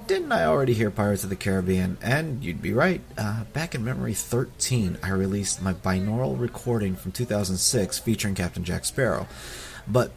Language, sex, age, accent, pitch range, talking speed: English, male, 30-49, American, 95-125 Hz, 170 wpm